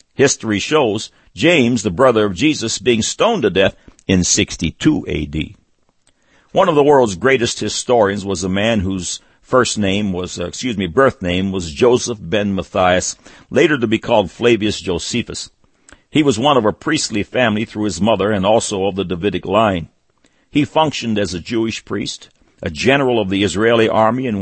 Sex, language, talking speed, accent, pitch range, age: male, English, 175 wpm, American, 95-120 Hz, 60-79